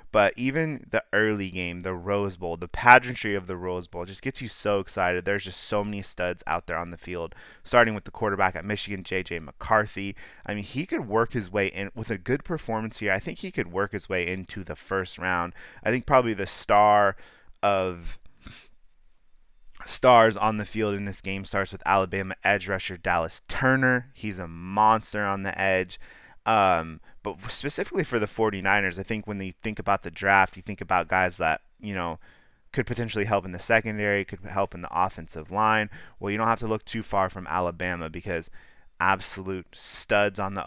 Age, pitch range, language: 30-49, 90-110 Hz, English